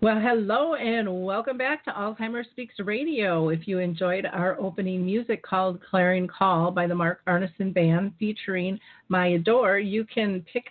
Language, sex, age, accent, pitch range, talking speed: English, female, 40-59, American, 170-210 Hz, 165 wpm